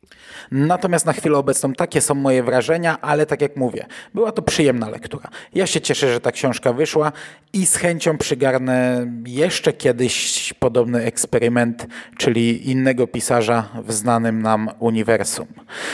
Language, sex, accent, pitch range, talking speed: Polish, male, native, 125-155 Hz, 145 wpm